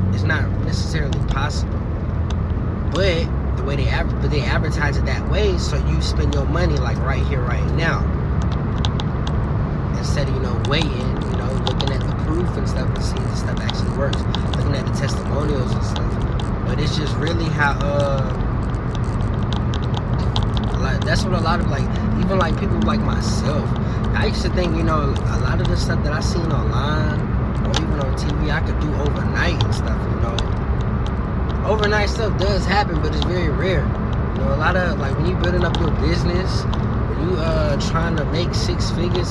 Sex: male